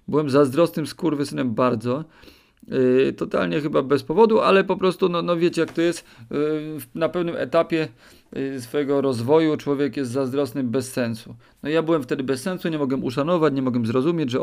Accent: native